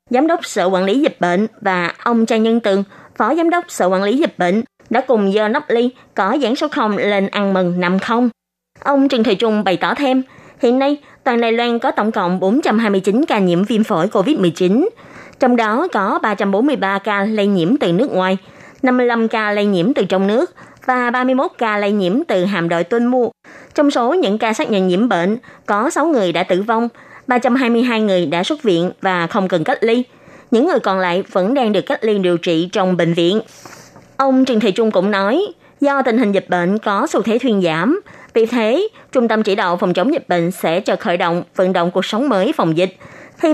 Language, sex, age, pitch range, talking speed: Vietnamese, female, 20-39, 185-250 Hz, 220 wpm